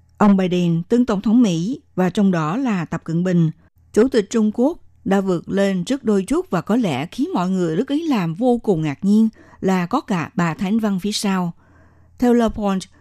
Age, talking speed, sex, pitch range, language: 60-79, 215 wpm, female, 165-225 Hz, Vietnamese